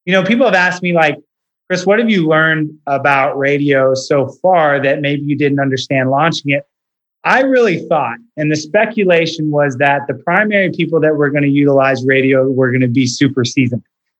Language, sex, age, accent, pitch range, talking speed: English, male, 30-49, American, 145-185 Hz, 195 wpm